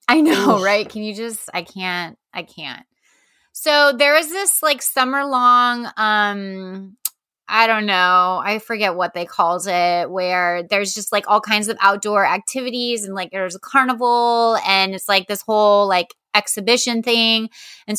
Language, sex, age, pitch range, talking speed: English, female, 20-39, 195-245 Hz, 170 wpm